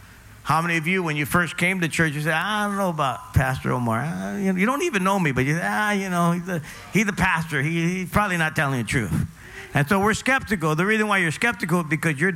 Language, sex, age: English, male, 50-69